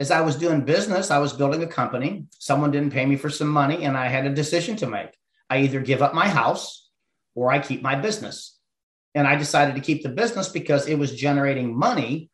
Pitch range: 140-165 Hz